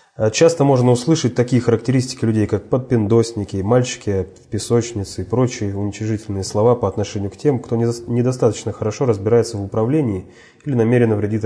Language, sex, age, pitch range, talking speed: Russian, male, 30-49, 110-130 Hz, 135 wpm